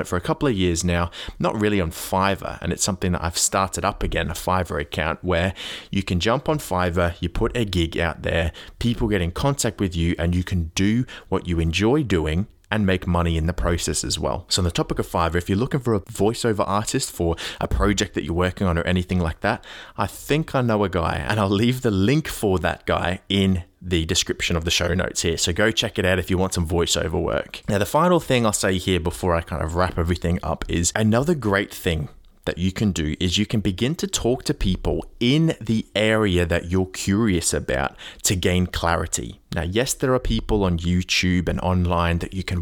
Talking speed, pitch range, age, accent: 230 wpm, 85-105 Hz, 20-39, Australian